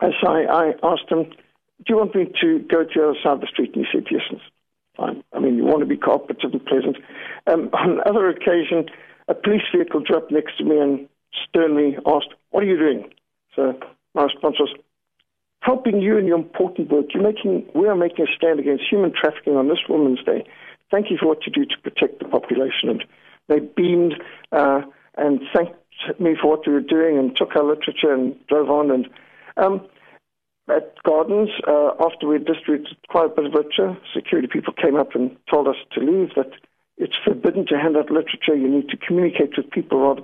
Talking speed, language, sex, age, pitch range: 205 wpm, English, male, 60-79, 150-195 Hz